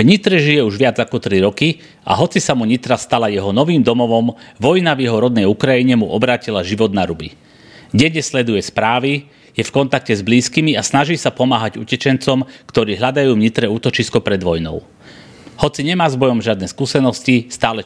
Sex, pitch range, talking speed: male, 100-130 Hz, 180 wpm